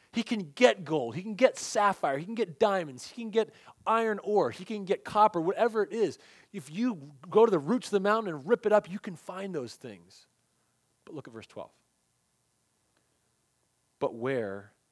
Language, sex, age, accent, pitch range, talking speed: English, male, 30-49, American, 130-210 Hz, 195 wpm